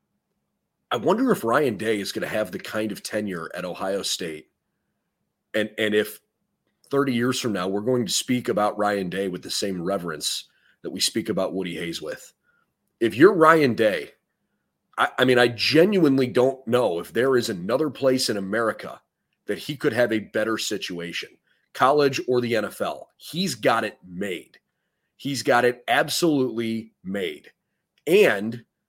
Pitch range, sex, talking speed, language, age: 110-160 Hz, male, 165 wpm, English, 30-49